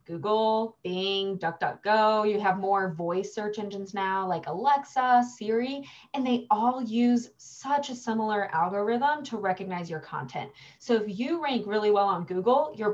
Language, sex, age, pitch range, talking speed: English, female, 20-39, 185-240 Hz, 160 wpm